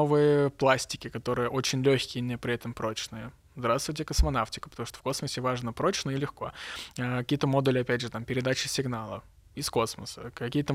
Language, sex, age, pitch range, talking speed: Russian, male, 20-39, 120-135 Hz, 170 wpm